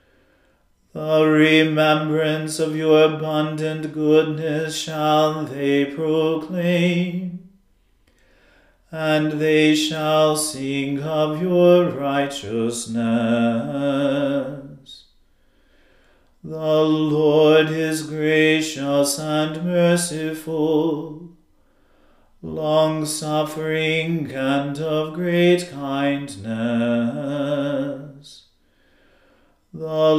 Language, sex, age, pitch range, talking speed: English, male, 40-59, 140-155 Hz, 55 wpm